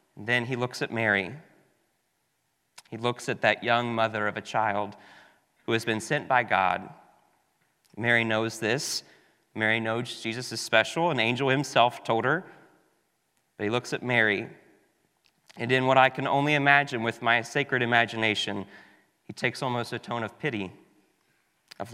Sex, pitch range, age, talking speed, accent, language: male, 110-130 Hz, 30-49, 155 wpm, American, English